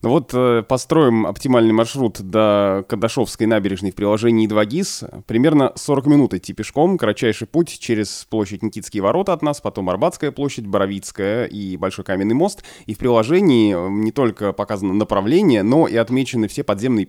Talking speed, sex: 155 wpm, male